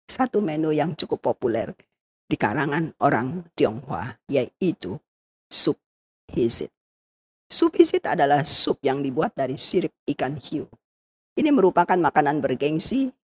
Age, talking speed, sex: 40-59, 120 wpm, female